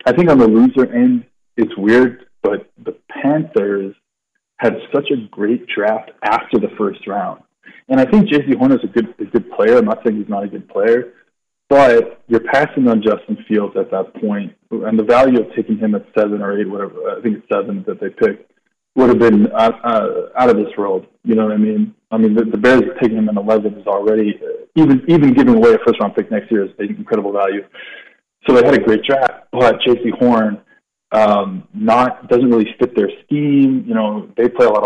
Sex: male